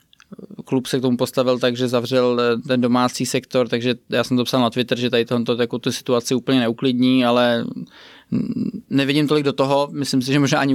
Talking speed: 190 wpm